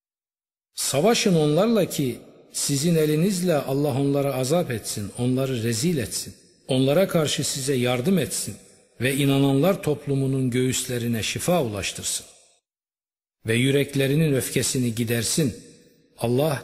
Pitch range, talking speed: 115-150 Hz, 100 wpm